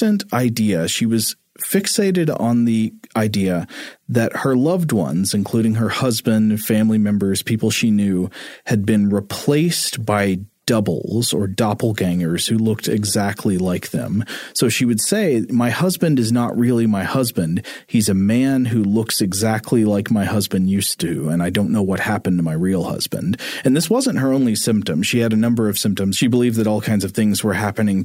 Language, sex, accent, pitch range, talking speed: English, male, American, 100-125 Hz, 180 wpm